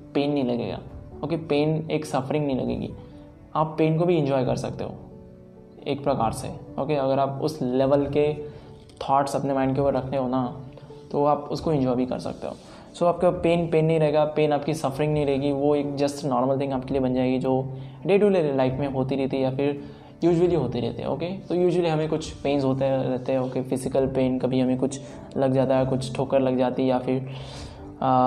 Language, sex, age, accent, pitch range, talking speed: Hindi, male, 20-39, native, 130-150 Hz, 225 wpm